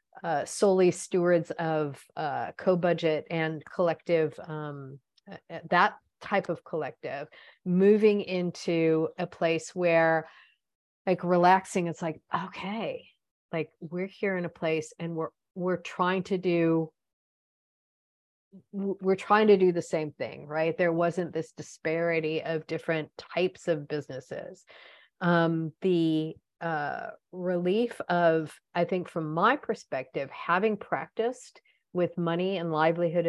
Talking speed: 125 wpm